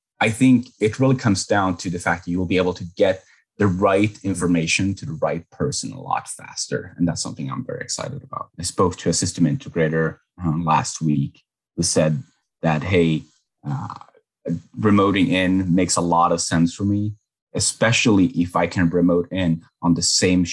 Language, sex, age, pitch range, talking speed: English, male, 30-49, 85-95 Hz, 190 wpm